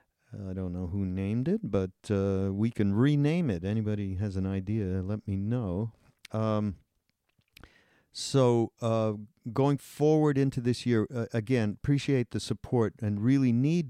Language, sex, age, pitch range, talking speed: English, male, 50-69, 95-120 Hz, 150 wpm